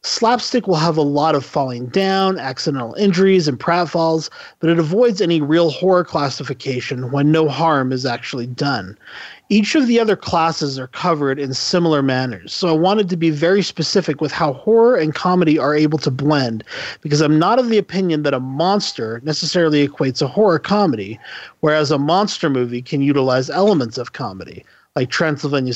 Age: 40-59